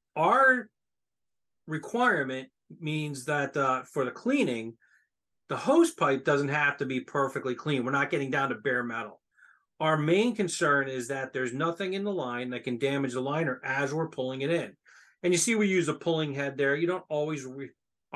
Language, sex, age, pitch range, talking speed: English, male, 40-59, 130-165 Hz, 190 wpm